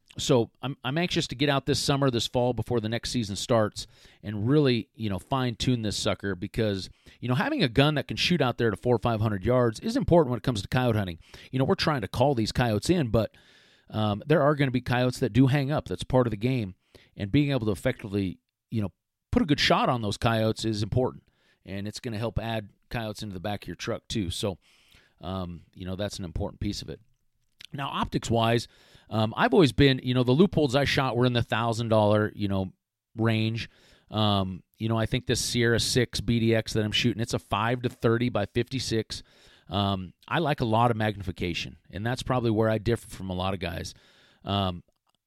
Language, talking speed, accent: English, 230 wpm, American